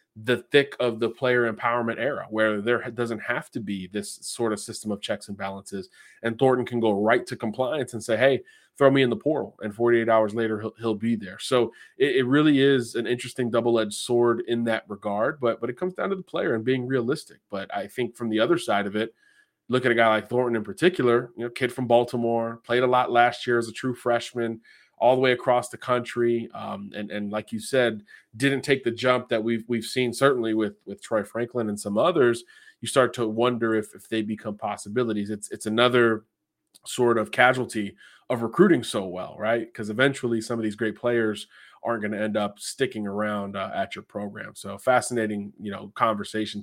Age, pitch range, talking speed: 20-39, 110-125 Hz, 220 wpm